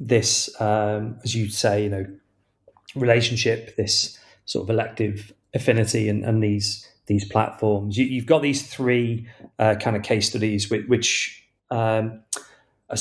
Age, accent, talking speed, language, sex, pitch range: 30-49, British, 150 wpm, English, male, 105-125 Hz